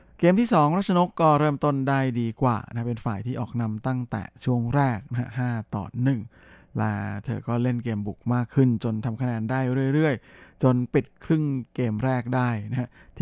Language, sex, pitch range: Thai, male, 115-135 Hz